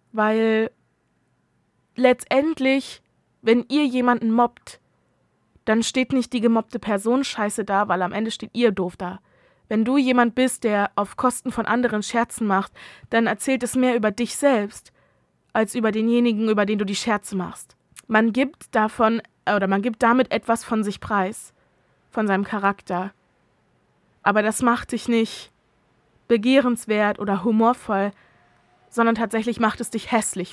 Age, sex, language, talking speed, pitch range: 20-39, female, German, 150 wpm, 215-250 Hz